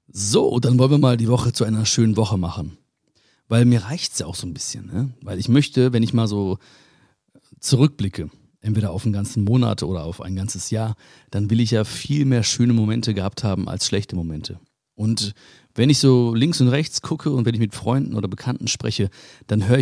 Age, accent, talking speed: 40-59, German, 210 wpm